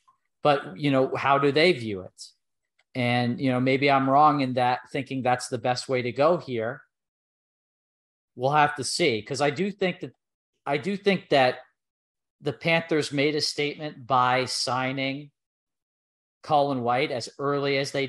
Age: 40-59